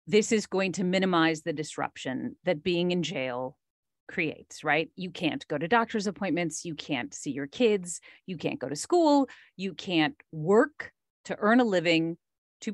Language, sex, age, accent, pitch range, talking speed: English, female, 40-59, American, 155-195 Hz, 175 wpm